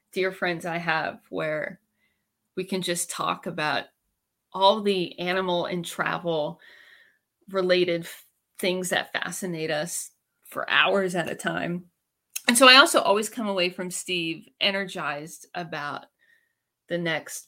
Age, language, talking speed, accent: 30-49, English, 130 wpm, American